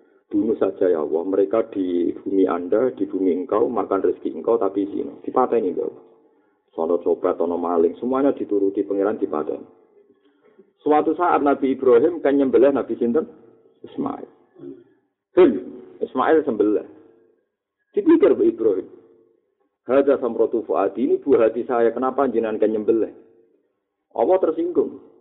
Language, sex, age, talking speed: Indonesian, male, 50-69, 135 wpm